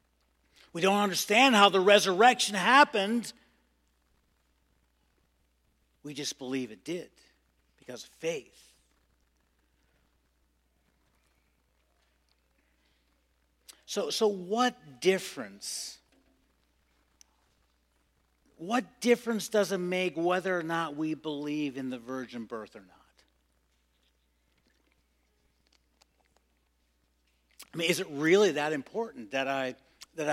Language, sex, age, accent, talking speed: English, male, 50-69, American, 90 wpm